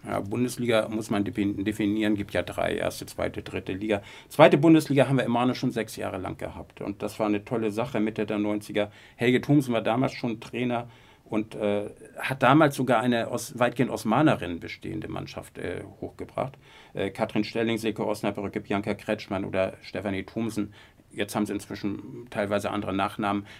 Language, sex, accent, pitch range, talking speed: German, male, German, 105-130 Hz, 170 wpm